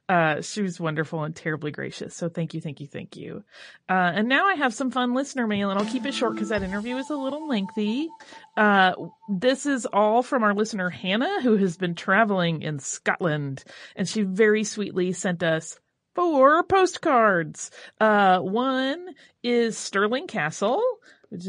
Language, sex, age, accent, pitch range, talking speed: English, female, 30-49, American, 180-255 Hz, 175 wpm